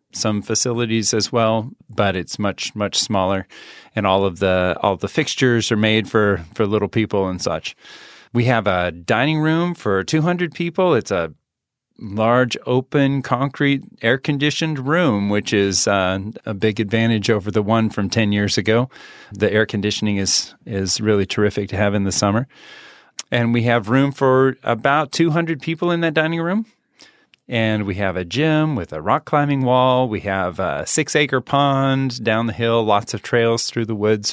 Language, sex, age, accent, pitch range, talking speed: English, male, 30-49, American, 105-135 Hz, 180 wpm